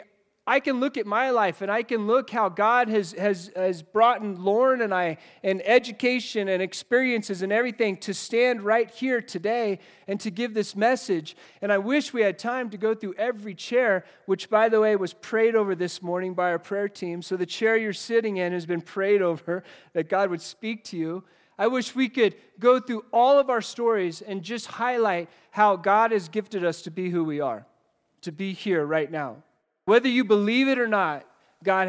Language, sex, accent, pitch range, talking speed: English, male, American, 180-225 Hz, 210 wpm